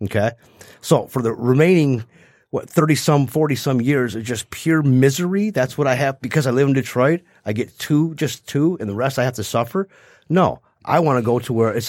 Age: 30-49